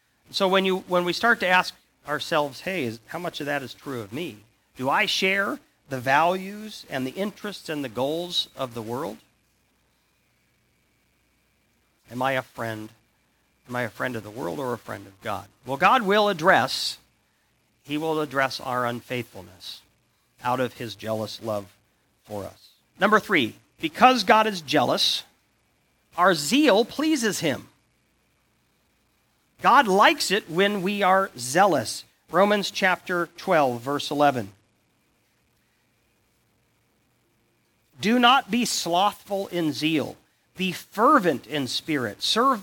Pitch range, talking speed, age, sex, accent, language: 125-200 Hz, 140 wpm, 50-69, male, American, English